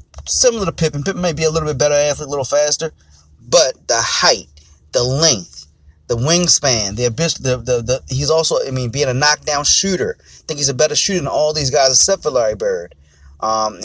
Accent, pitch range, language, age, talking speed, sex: American, 110-165 Hz, English, 30-49, 200 wpm, male